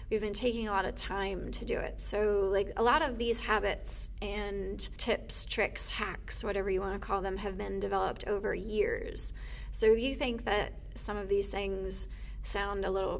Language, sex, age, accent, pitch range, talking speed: English, female, 20-39, American, 195-220 Hz, 200 wpm